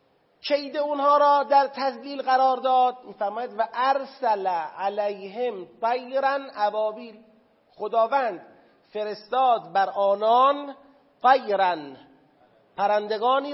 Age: 40-59